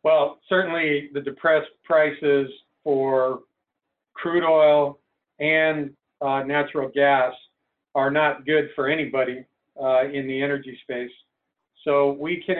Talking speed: 120 wpm